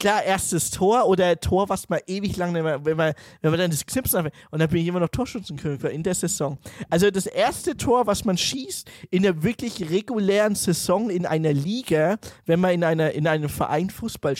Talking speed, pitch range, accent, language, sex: 220 wpm, 160-215 Hz, German, German, male